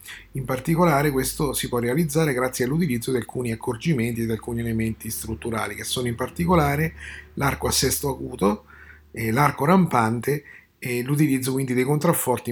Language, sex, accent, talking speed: Italian, male, native, 155 wpm